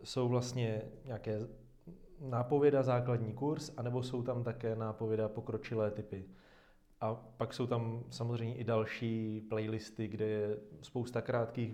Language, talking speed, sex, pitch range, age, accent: Czech, 130 wpm, male, 110-125 Hz, 30-49, native